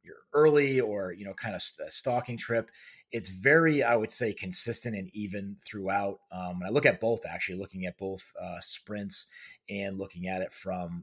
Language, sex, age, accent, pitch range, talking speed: English, male, 30-49, American, 90-115 Hz, 195 wpm